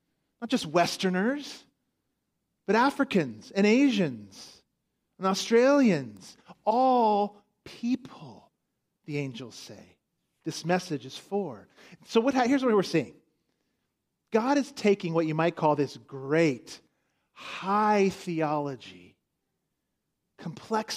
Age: 40-59